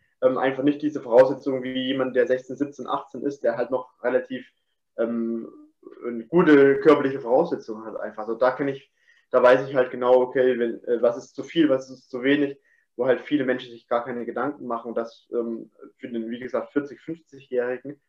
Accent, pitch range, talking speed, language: German, 125-150 Hz, 200 wpm, German